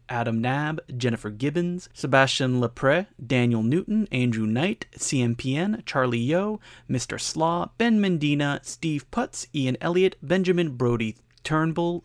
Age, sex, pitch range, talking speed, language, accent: 30-49, male, 125-170 Hz, 120 wpm, English, American